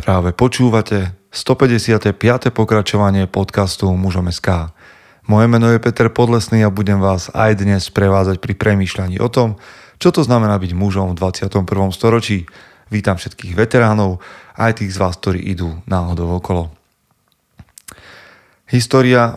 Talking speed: 130 wpm